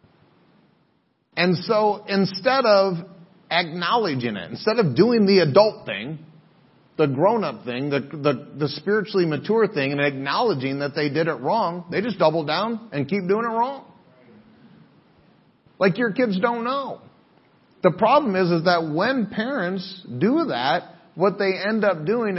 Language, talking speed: English, 150 wpm